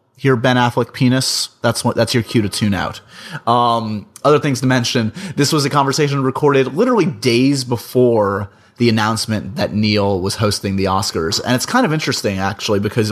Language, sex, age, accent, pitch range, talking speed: English, male, 30-49, American, 100-125 Hz, 185 wpm